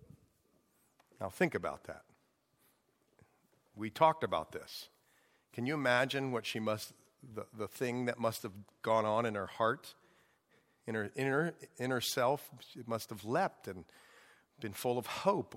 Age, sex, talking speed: 50-69, male, 145 wpm